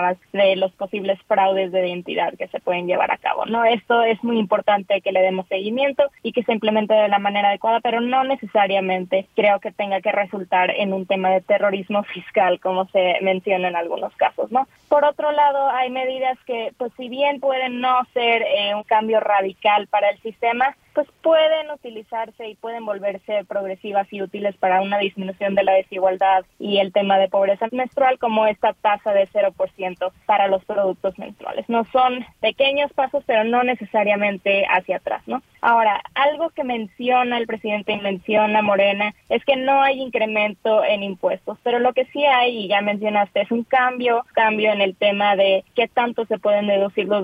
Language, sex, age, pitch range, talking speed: Spanish, female, 20-39, 200-250 Hz, 185 wpm